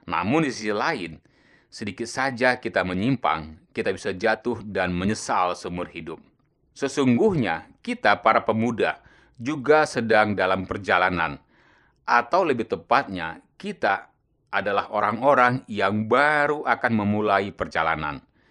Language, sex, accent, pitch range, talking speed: Indonesian, male, native, 95-125 Hz, 110 wpm